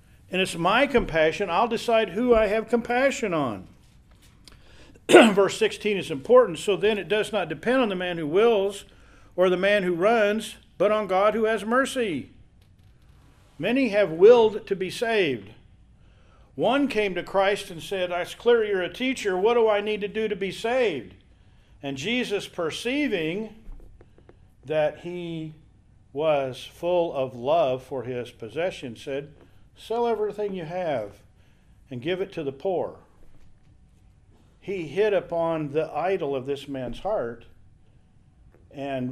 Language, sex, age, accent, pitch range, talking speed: English, male, 50-69, American, 125-210 Hz, 145 wpm